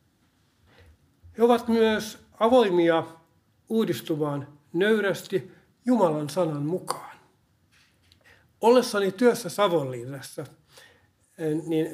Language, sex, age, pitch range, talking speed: Finnish, male, 60-79, 145-180 Hz, 65 wpm